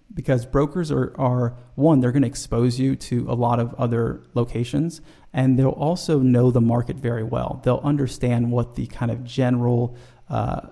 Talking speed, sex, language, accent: 180 wpm, male, English, American